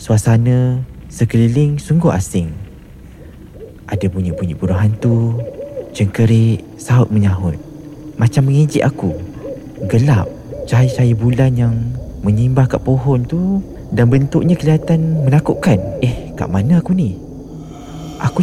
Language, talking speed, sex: Malay, 105 wpm, male